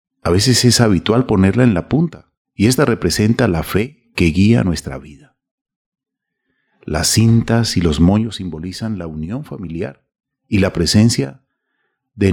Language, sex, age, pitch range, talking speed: Spanish, male, 40-59, 80-110 Hz, 145 wpm